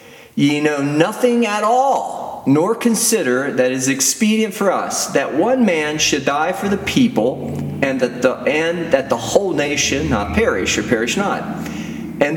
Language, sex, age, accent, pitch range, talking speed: English, male, 40-59, American, 115-175 Hz, 170 wpm